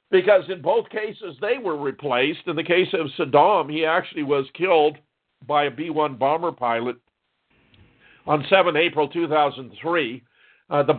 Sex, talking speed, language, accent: male, 135 wpm, English, American